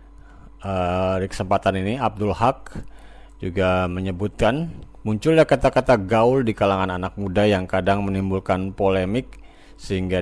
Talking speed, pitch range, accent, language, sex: 115 wpm, 95-120 Hz, native, Indonesian, male